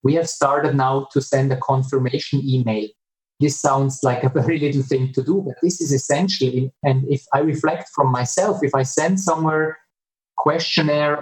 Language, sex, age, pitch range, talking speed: English, male, 30-49, 135-155 Hz, 180 wpm